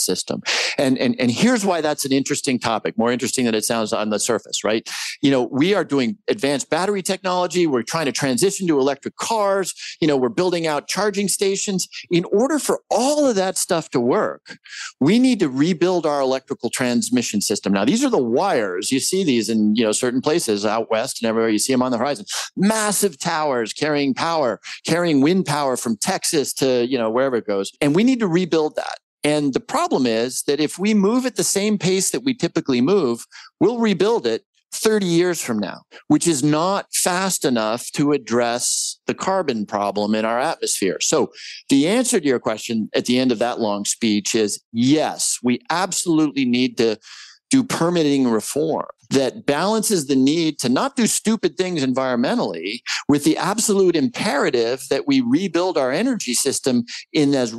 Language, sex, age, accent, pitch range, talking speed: English, male, 50-69, American, 125-195 Hz, 190 wpm